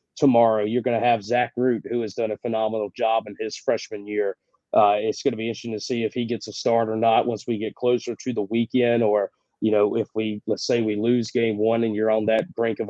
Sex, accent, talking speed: male, American, 260 wpm